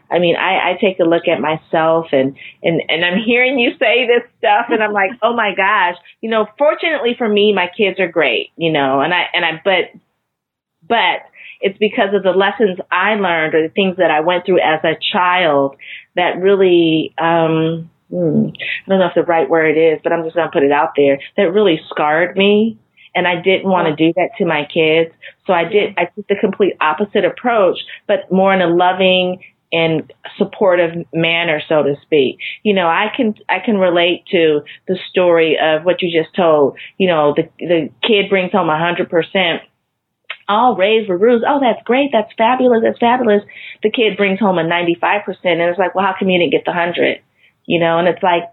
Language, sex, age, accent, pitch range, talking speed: English, female, 30-49, American, 165-210 Hz, 210 wpm